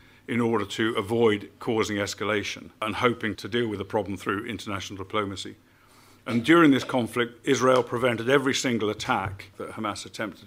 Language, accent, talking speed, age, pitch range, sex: English, British, 160 wpm, 50-69, 100-120 Hz, male